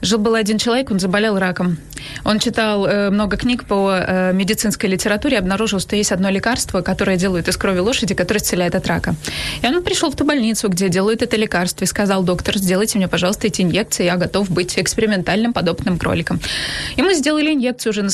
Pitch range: 190-235 Hz